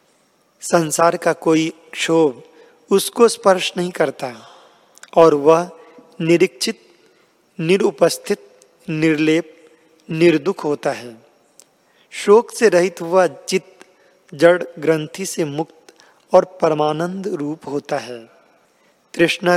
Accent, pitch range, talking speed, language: native, 155-185 Hz, 95 wpm, Hindi